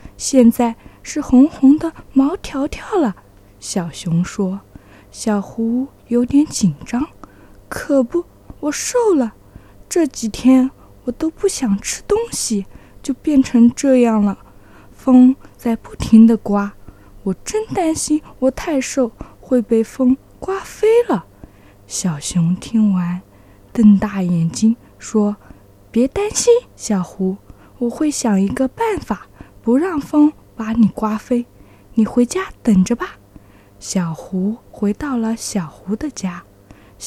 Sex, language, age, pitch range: female, Chinese, 20-39, 185-270 Hz